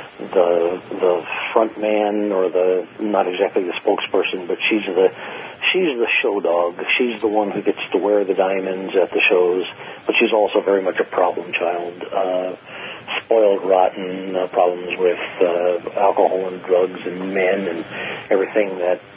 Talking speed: 165 wpm